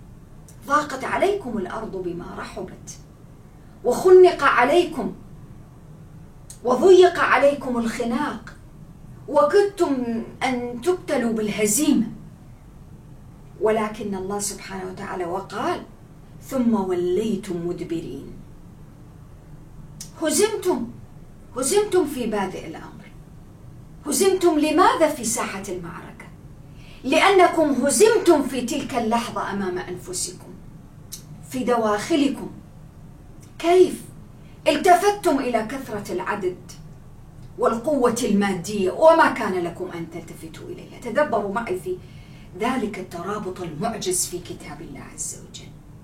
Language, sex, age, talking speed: English, female, 40-59, 80 wpm